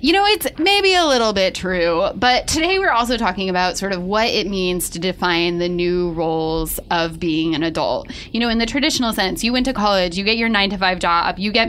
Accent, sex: American, female